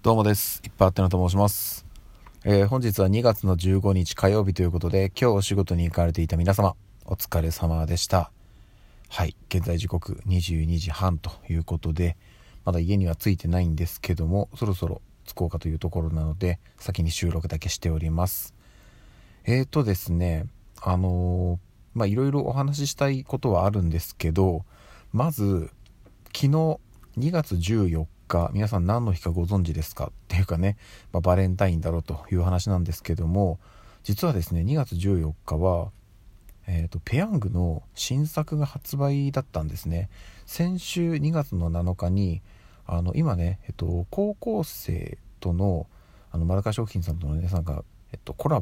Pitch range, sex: 85-105 Hz, male